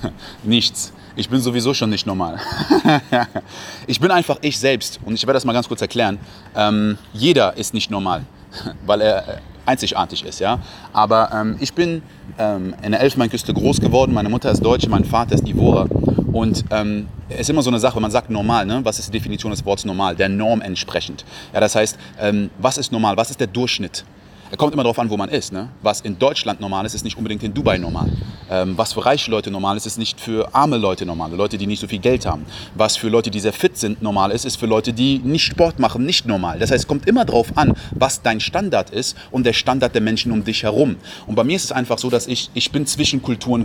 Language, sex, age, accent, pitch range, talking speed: German, male, 30-49, German, 105-125 Hz, 235 wpm